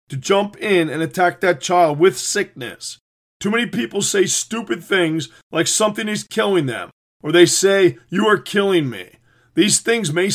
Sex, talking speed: male, 175 wpm